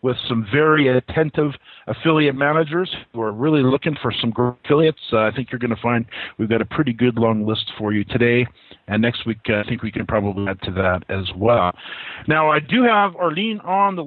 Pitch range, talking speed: 115-150 Hz, 220 wpm